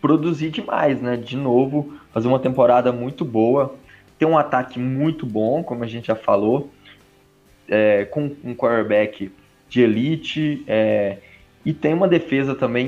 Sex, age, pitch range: male, 20-39, 105-135 Hz